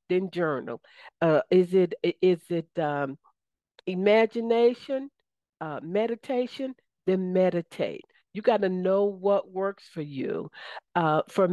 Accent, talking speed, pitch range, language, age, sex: American, 120 wpm, 175-210 Hz, English, 50-69, female